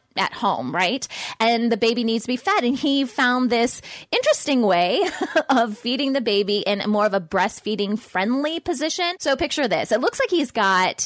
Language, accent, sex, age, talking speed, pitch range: English, American, female, 20-39, 190 wpm, 200-265 Hz